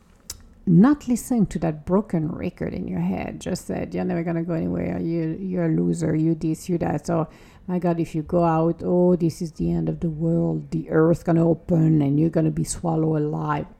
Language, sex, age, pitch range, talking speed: English, female, 50-69, 170-230 Hz, 215 wpm